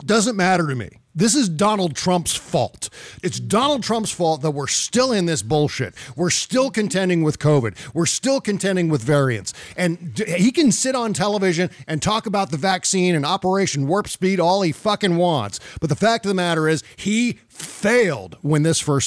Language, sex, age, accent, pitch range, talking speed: English, male, 50-69, American, 150-210 Hz, 190 wpm